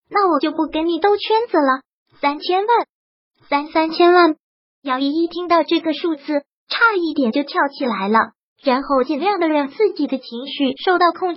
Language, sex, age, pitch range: Chinese, male, 20-39, 270-335 Hz